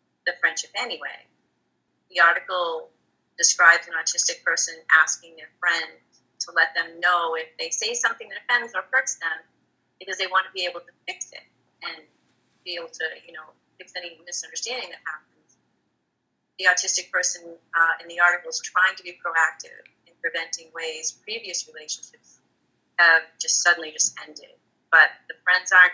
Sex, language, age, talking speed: female, English, 30-49, 165 wpm